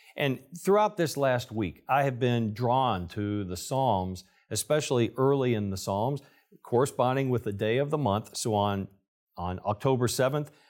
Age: 50-69